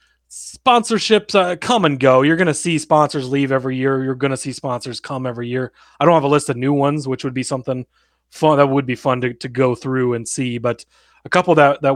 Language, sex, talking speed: English, male, 245 wpm